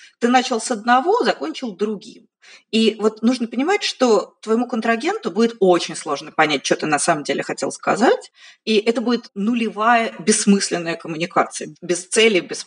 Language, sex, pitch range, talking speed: Russian, female, 185-245 Hz, 155 wpm